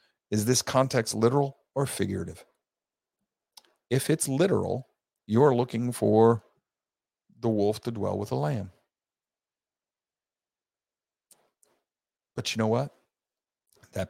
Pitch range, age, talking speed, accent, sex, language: 105-120 Hz, 50-69, 100 wpm, American, male, English